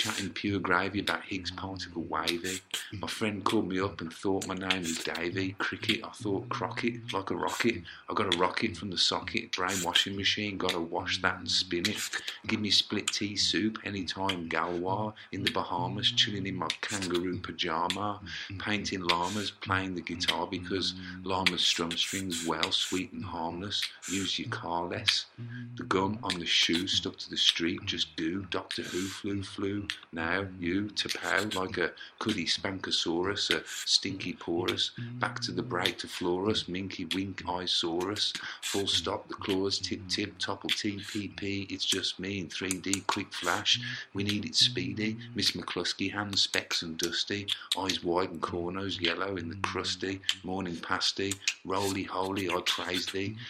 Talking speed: 170 wpm